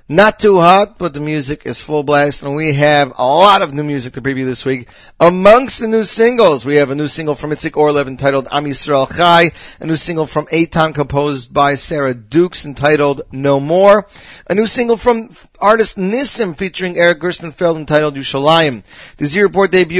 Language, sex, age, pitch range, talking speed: English, male, 40-59, 145-185 Hz, 190 wpm